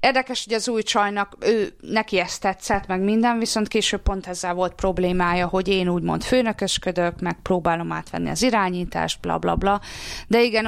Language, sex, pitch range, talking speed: Hungarian, female, 180-225 Hz, 165 wpm